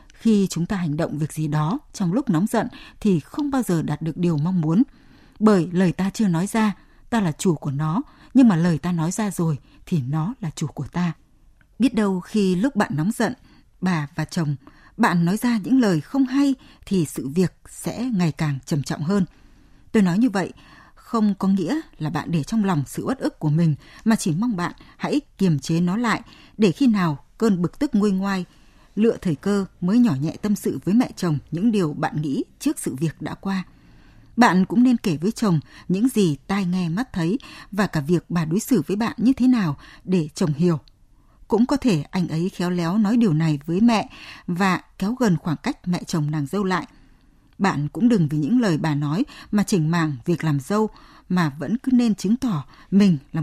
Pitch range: 160-220 Hz